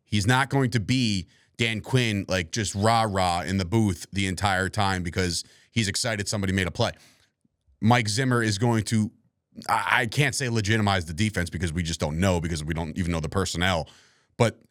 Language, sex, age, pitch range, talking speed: English, male, 30-49, 100-125 Hz, 190 wpm